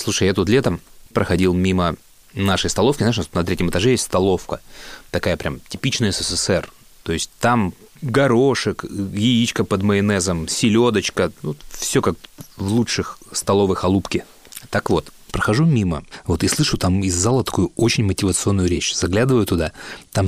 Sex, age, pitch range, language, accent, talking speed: male, 30-49, 90-125 Hz, Russian, native, 150 wpm